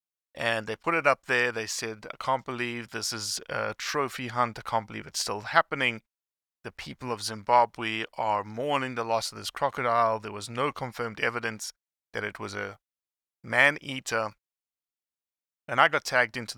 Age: 30-49